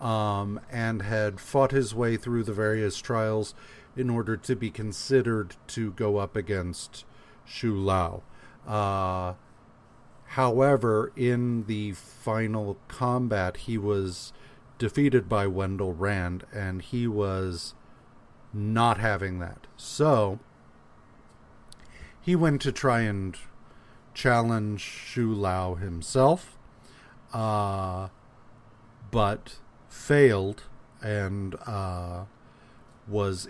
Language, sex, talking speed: English, male, 100 wpm